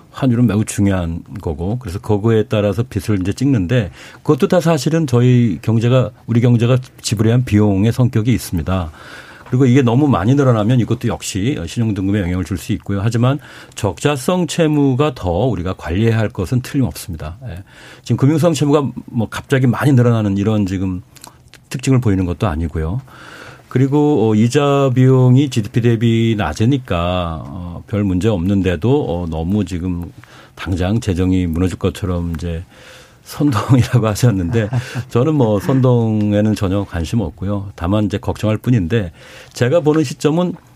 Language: Korean